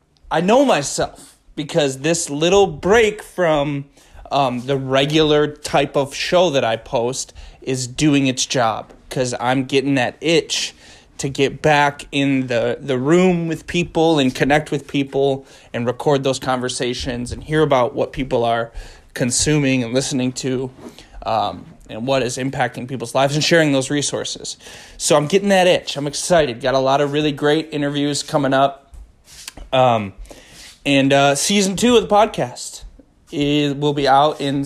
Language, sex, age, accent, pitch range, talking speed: English, male, 20-39, American, 125-150 Hz, 160 wpm